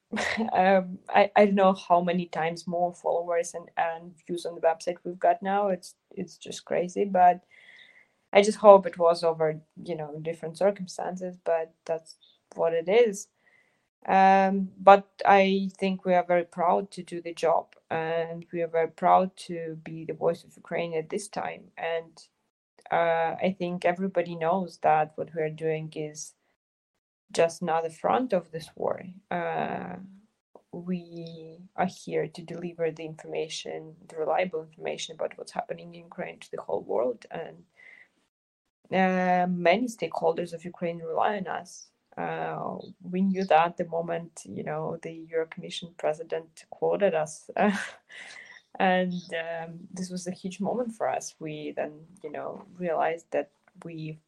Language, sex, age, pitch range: English, female, 20-39, 165-190 Hz